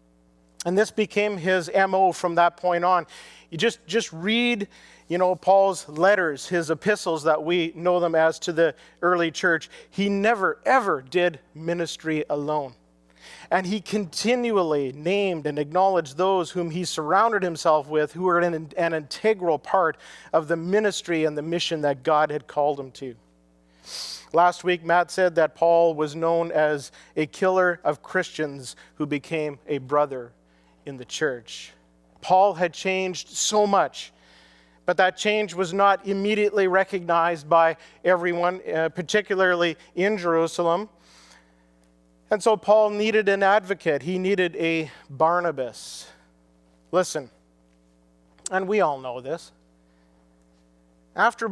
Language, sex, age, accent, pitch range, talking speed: English, male, 40-59, American, 135-185 Hz, 140 wpm